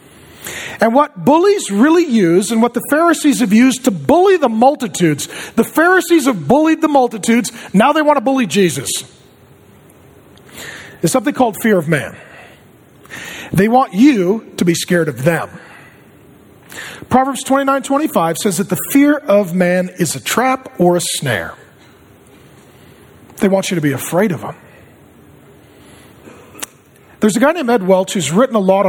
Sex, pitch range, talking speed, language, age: male, 180-280 Hz, 155 wpm, English, 40-59